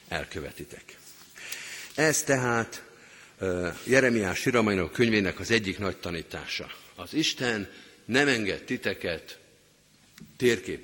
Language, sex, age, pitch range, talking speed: Hungarian, male, 50-69, 95-130 Hz, 95 wpm